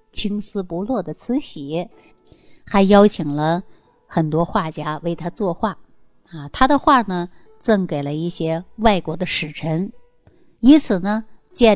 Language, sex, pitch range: Chinese, female, 160-225 Hz